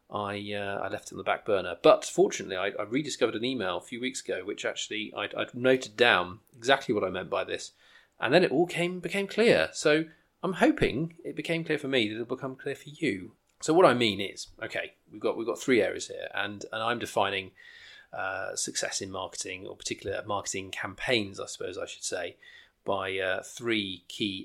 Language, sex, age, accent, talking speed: English, male, 30-49, British, 215 wpm